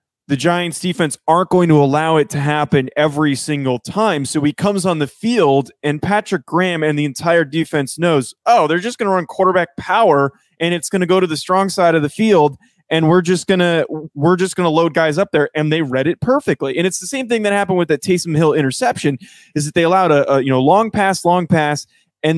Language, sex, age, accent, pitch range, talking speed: English, male, 20-39, American, 145-185 Hz, 240 wpm